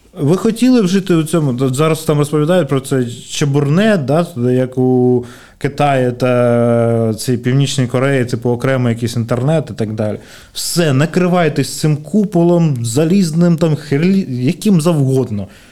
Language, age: Ukrainian, 20-39